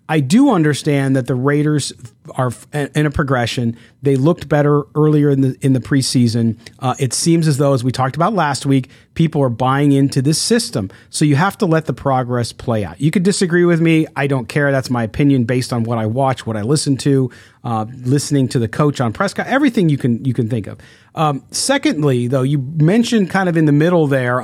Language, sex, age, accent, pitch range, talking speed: English, male, 40-59, American, 120-150 Hz, 220 wpm